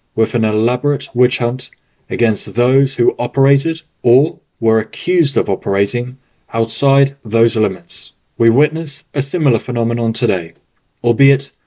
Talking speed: 125 wpm